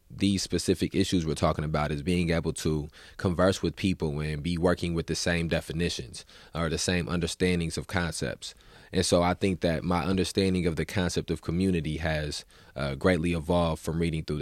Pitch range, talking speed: 80-90 Hz, 185 wpm